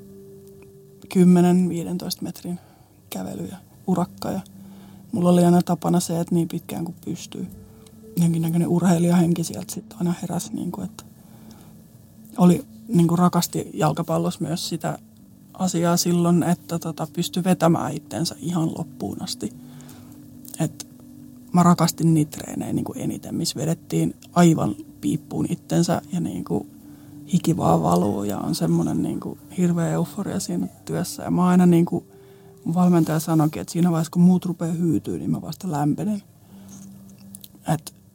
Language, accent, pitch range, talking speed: Finnish, native, 145-180 Hz, 135 wpm